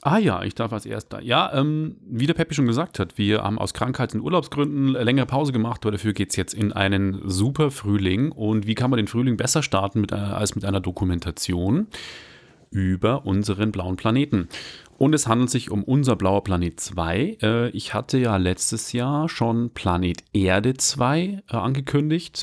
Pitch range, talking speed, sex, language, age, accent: 100-135 Hz, 195 wpm, male, German, 30-49, German